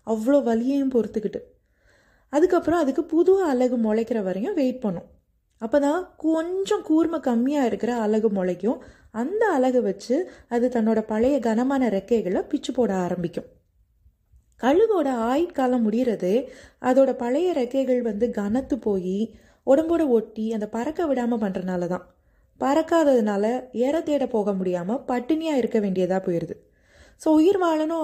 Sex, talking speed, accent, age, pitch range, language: female, 125 wpm, native, 20-39, 215-275 Hz, Tamil